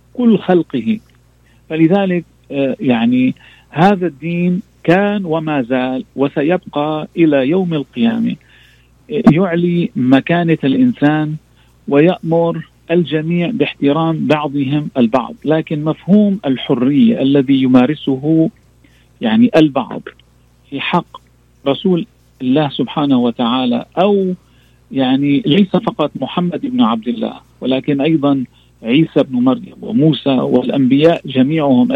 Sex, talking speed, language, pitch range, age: male, 95 wpm, Arabic, 135-190 Hz, 50-69